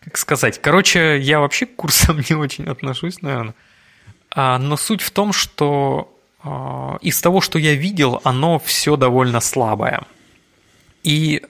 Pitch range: 130-155 Hz